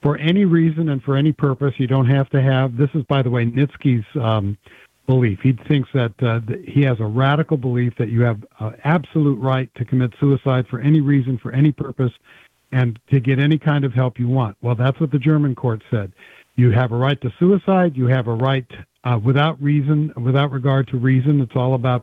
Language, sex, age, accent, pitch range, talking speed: English, male, 60-79, American, 130-170 Hz, 220 wpm